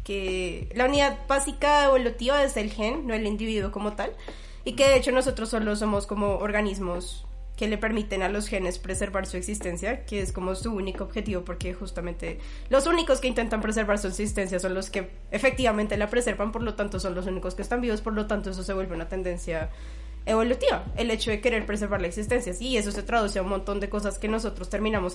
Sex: female